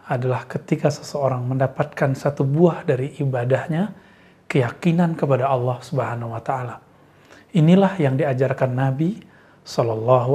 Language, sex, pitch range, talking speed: Indonesian, male, 130-170 Hz, 110 wpm